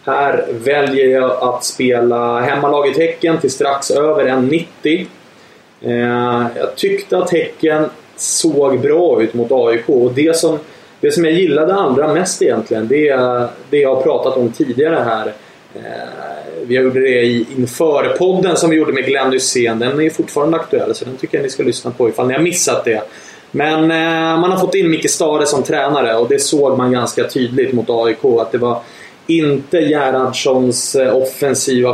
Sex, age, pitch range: male, 30-49, 125-150 Hz